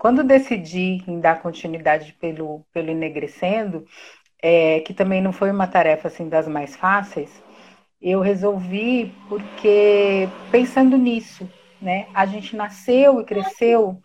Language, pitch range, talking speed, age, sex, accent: Portuguese, 170-210 Hz, 130 wpm, 40-59, female, Brazilian